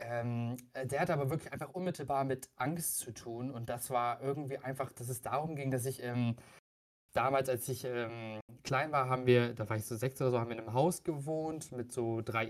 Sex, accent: male, German